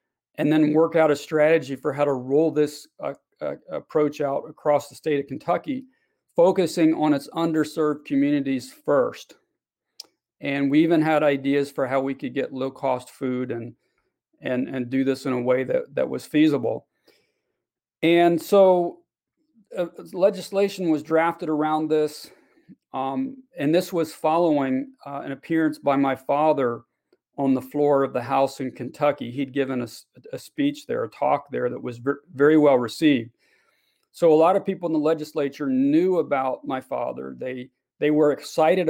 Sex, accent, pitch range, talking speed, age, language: male, American, 135-170 Hz, 165 wpm, 40-59, English